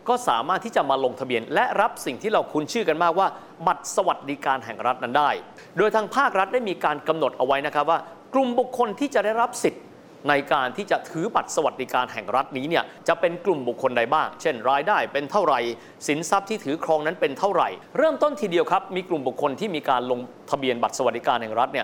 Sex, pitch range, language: male, 130-185 Hz, Thai